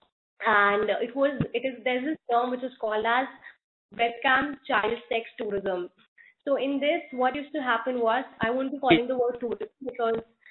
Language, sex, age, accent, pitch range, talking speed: English, female, 20-39, Indian, 225-270 Hz, 185 wpm